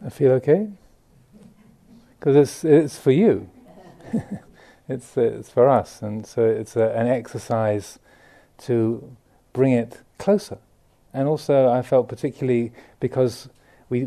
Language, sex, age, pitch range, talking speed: English, male, 40-59, 115-135 Hz, 125 wpm